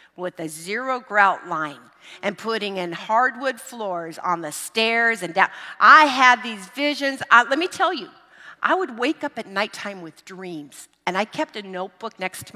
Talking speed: 180 wpm